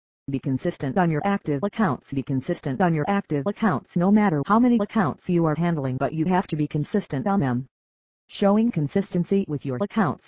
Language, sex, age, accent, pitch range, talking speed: English, female, 40-59, American, 135-185 Hz, 195 wpm